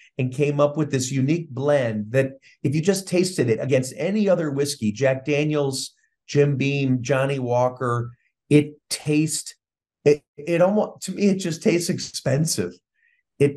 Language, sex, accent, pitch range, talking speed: Greek, male, American, 120-145 Hz, 155 wpm